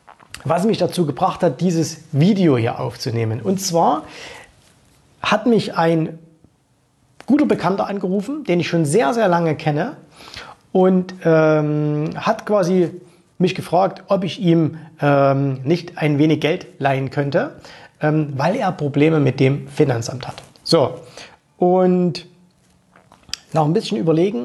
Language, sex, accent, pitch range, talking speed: German, male, German, 145-180 Hz, 135 wpm